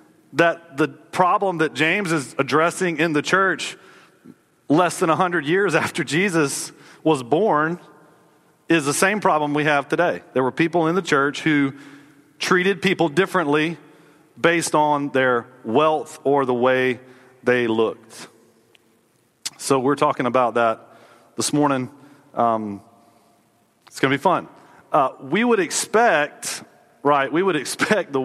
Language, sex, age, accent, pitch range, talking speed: English, male, 40-59, American, 130-155 Hz, 140 wpm